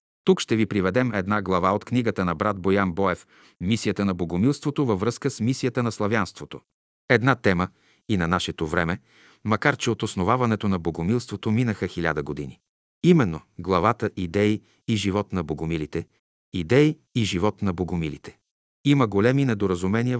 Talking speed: 150 wpm